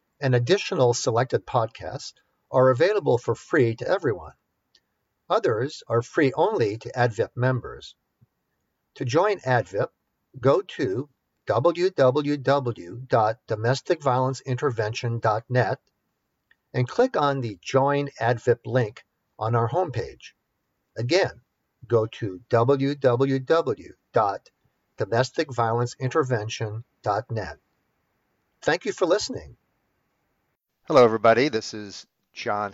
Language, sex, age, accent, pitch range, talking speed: English, male, 50-69, American, 105-125 Hz, 85 wpm